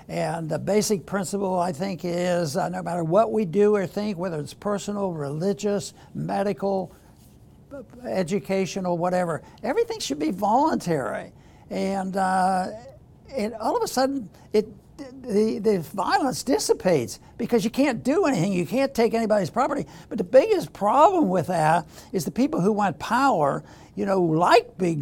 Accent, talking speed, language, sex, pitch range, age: American, 155 wpm, English, male, 175-220 Hz, 60-79